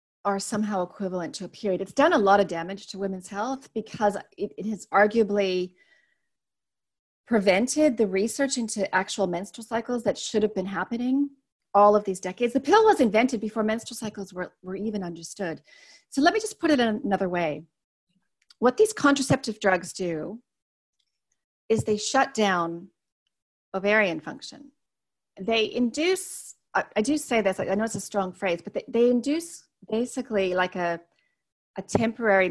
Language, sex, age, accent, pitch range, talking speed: English, female, 30-49, American, 190-245 Hz, 165 wpm